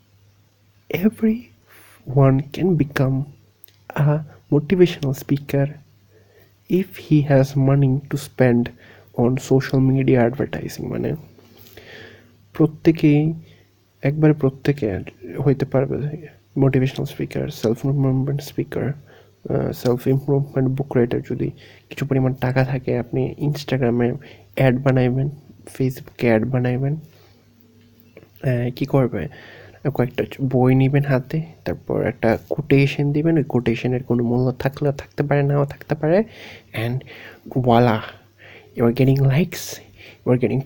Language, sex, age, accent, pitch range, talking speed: Bengali, male, 30-49, native, 115-145 Hz, 95 wpm